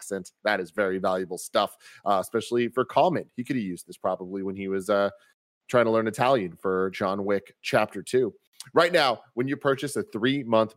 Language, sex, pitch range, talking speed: English, male, 105-130 Hz, 200 wpm